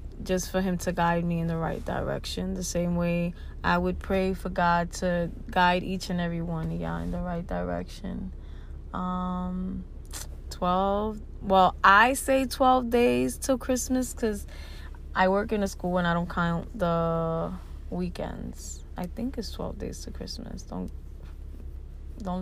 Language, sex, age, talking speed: English, female, 20-39, 160 wpm